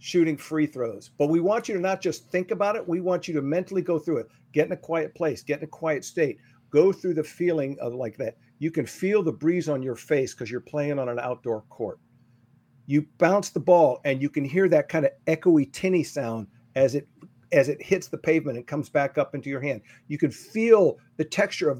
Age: 50-69